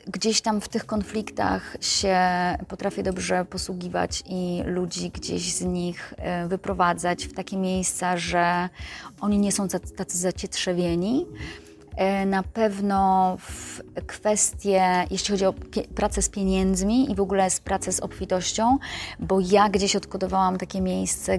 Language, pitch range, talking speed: Polish, 175-200 Hz, 130 wpm